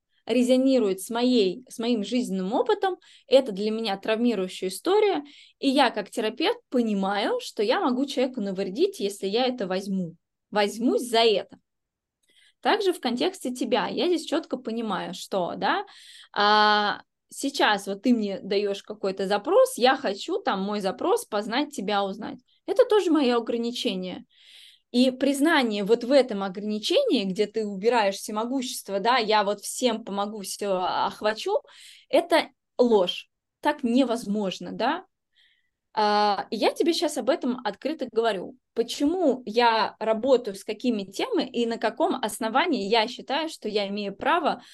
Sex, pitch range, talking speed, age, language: female, 205-275 Hz, 140 wpm, 20-39, Russian